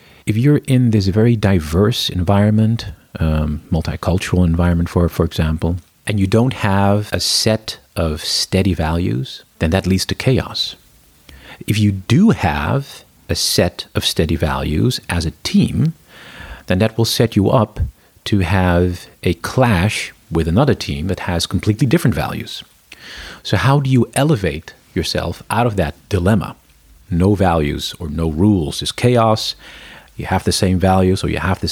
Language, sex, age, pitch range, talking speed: French, male, 40-59, 85-110 Hz, 155 wpm